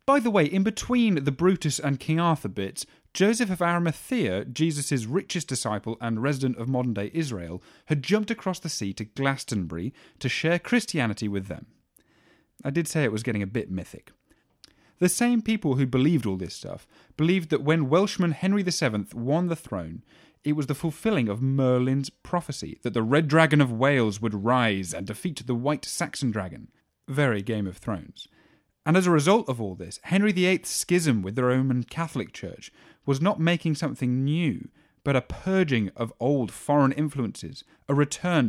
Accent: British